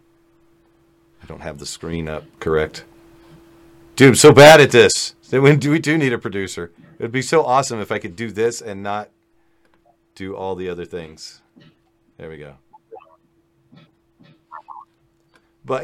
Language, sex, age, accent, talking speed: English, male, 40-59, American, 150 wpm